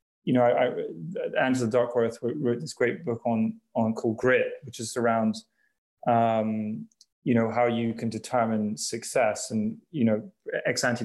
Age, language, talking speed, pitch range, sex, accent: 20-39, English, 165 wpm, 115-130 Hz, male, British